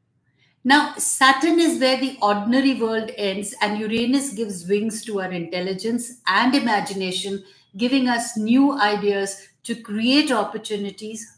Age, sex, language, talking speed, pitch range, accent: 50-69, female, English, 125 wpm, 190-250 Hz, Indian